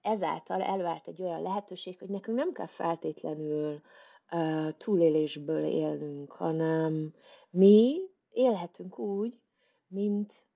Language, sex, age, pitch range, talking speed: Hungarian, female, 30-49, 165-195 Hz, 100 wpm